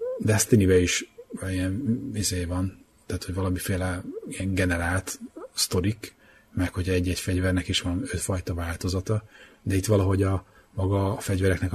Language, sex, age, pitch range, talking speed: Hungarian, male, 30-49, 90-105 Hz, 130 wpm